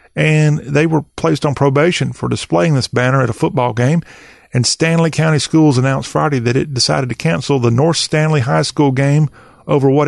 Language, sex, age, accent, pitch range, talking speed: English, male, 40-59, American, 130-165 Hz, 195 wpm